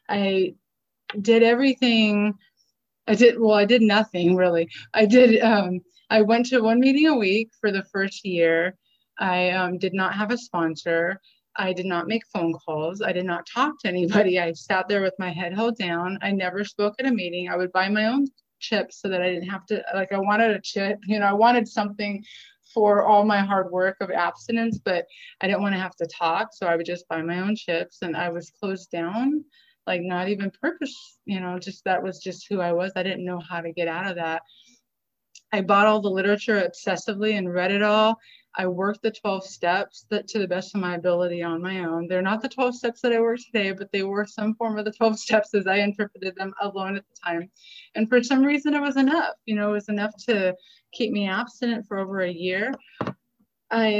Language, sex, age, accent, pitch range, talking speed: English, female, 20-39, American, 180-225 Hz, 220 wpm